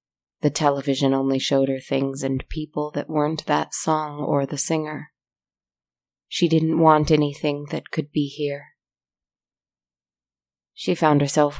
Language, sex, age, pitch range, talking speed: English, female, 30-49, 130-150 Hz, 135 wpm